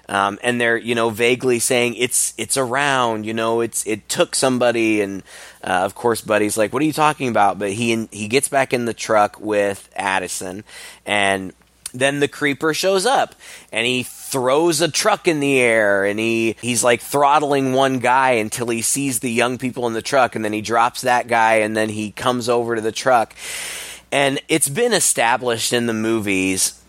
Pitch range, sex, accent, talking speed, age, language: 105-125 Hz, male, American, 200 wpm, 20-39, English